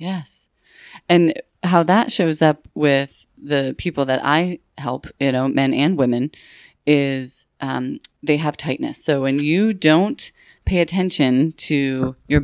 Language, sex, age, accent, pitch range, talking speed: English, female, 30-49, American, 145-190 Hz, 145 wpm